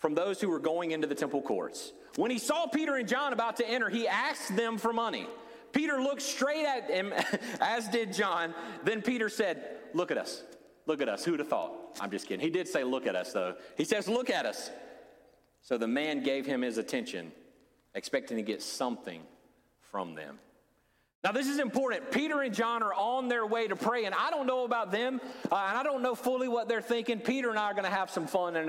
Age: 40-59